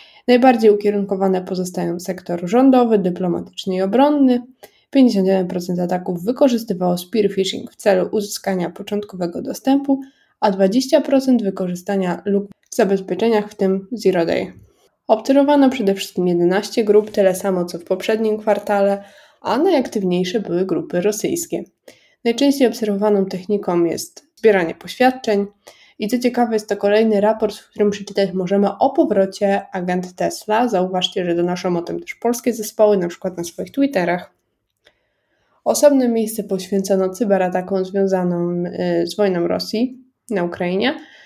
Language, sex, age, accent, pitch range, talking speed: Polish, female, 20-39, native, 185-235 Hz, 130 wpm